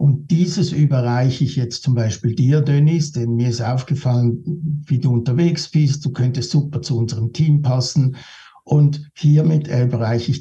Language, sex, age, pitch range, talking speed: German, male, 60-79, 120-145 Hz, 160 wpm